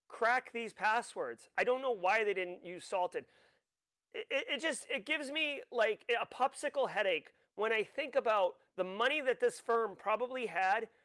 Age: 30-49